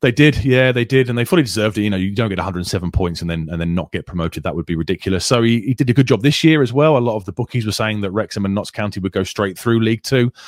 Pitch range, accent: 95-120 Hz, British